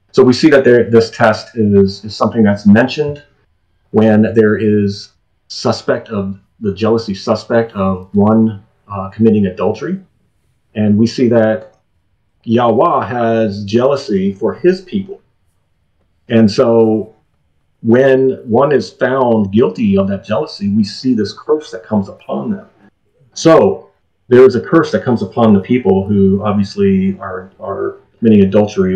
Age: 40-59